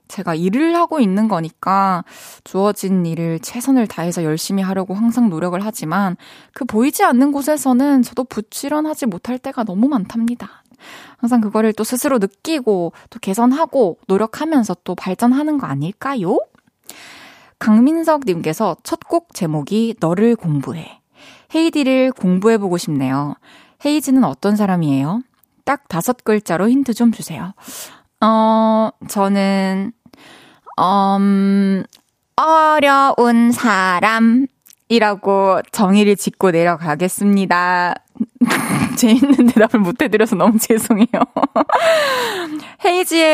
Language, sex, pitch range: Korean, female, 190-265 Hz